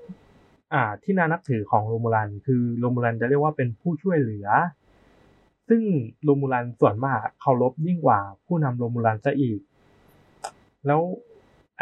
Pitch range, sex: 115-150 Hz, male